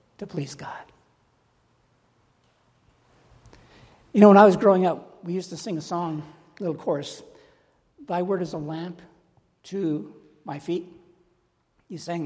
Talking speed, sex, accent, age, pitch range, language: 140 wpm, male, American, 60-79, 160-220 Hz, English